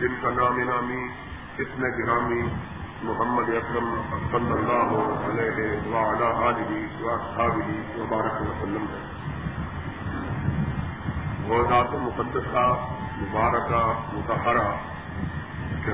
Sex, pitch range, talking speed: male, 110-135 Hz, 85 wpm